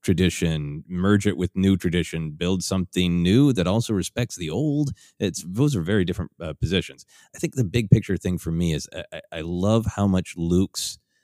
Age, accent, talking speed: 30-49, American, 190 wpm